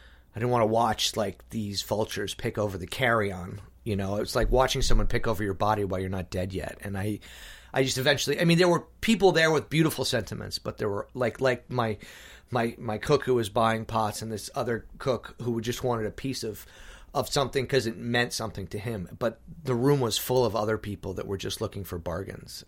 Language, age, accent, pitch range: English, 30-49, American, 100-135 Hz